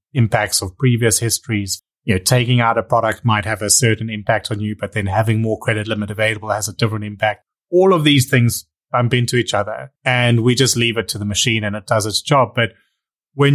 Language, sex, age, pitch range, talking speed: English, male, 30-49, 105-125 Hz, 225 wpm